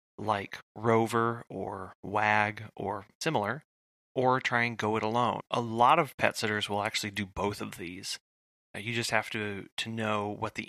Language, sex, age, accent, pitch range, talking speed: English, male, 30-49, American, 105-120 Hz, 175 wpm